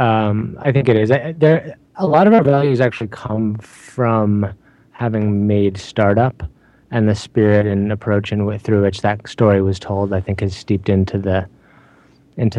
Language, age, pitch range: English, 20-39, 100-120 Hz